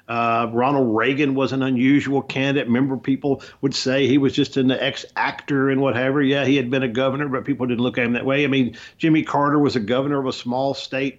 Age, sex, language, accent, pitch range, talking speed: 50-69, male, English, American, 125-145 Hz, 230 wpm